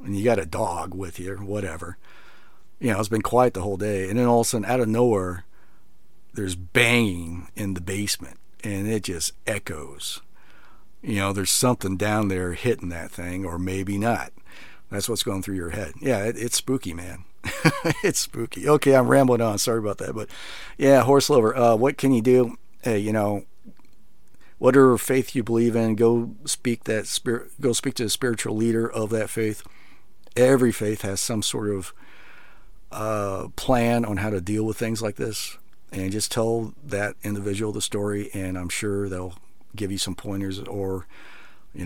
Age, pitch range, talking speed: 50-69, 100-120 Hz, 185 wpm